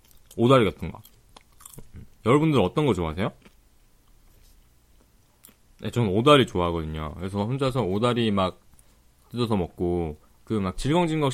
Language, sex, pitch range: Korean, male, 95-145 Hz